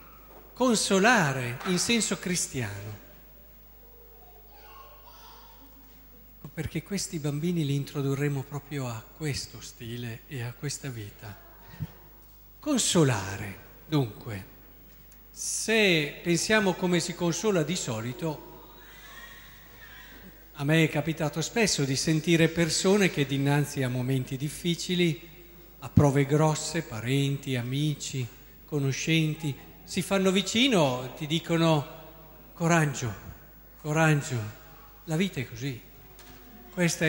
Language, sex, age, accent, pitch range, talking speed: Italian, male, 50-69, native, 140-180 Hz, 90 wpm